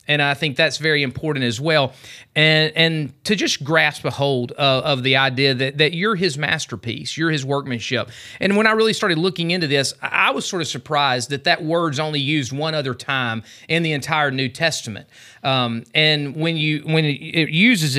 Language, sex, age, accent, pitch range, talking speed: English, male, 30-49, American, 135-165 Hz, 200 wpm